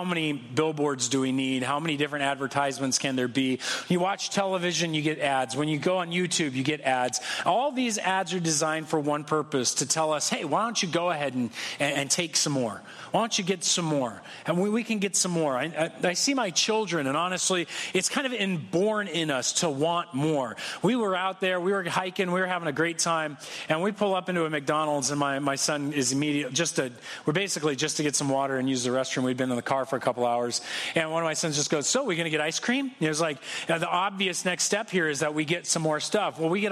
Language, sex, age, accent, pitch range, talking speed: English, male, 40-59, American, 145-190 Hz, 265 wpm